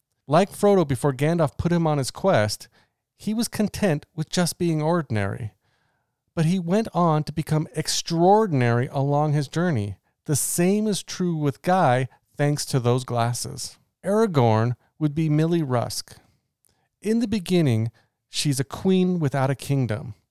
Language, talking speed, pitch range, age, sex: English, 150 wpm, 120-175 Hz, 40-59, male